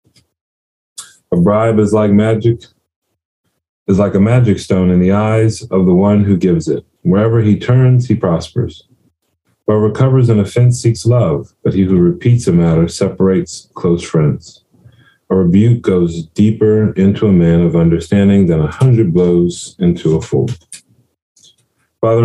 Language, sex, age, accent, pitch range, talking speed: English, male, 40-59, American, 90-110 Hz, 150 wpm